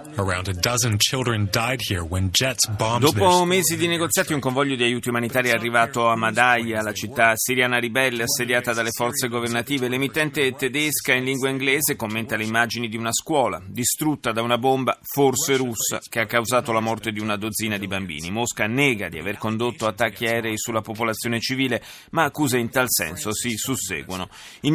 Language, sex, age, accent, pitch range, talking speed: Italian, male, 30-49, native, 110-135 Hz, 160 wpm